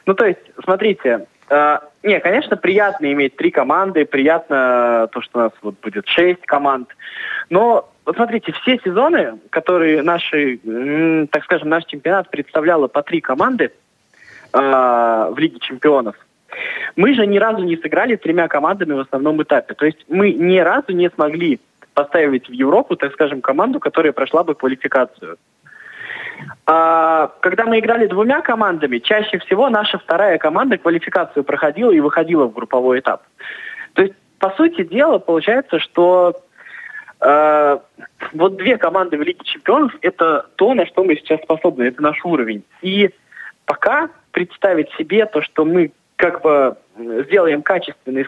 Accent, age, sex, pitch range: native, 20-39, male, 145-205 Hz